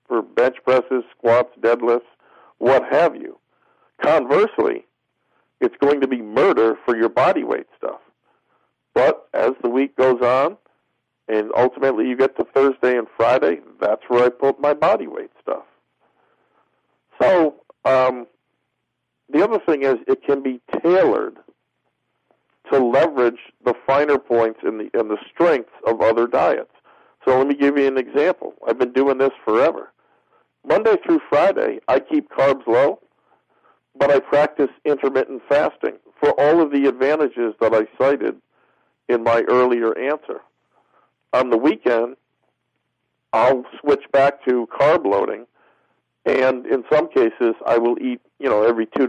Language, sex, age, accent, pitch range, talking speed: English, male, 50-69, American, 120-155 Hz, 150 wpm